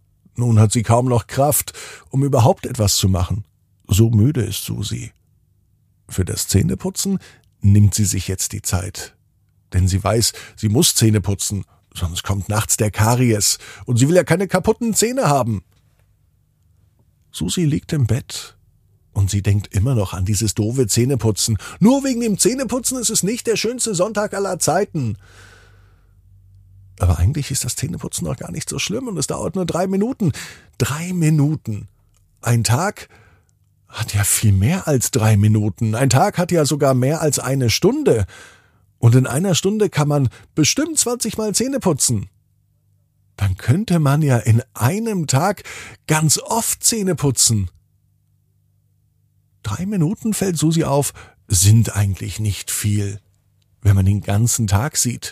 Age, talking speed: 50-69, 155 wpm